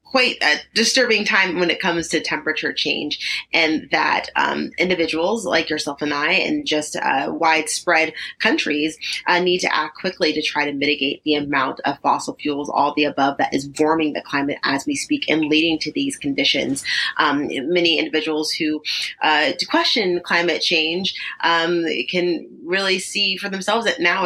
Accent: American